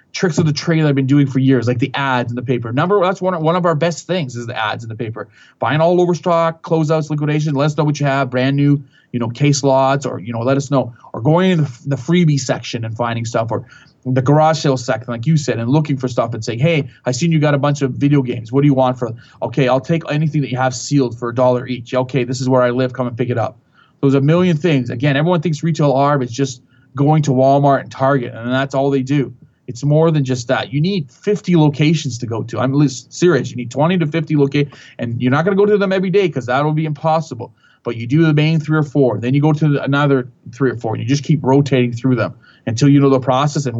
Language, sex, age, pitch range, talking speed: English, male, 20-39, 125-160 Hz, 275 wpm